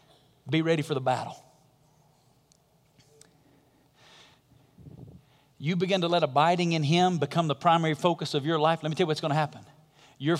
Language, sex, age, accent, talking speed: English, male, 40-59, American, 160 wpm